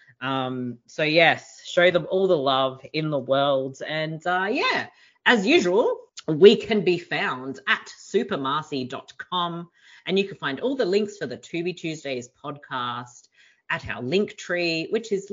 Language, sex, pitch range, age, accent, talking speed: English, female, 135-195 Hz, 30-49, Australian, 155 wpm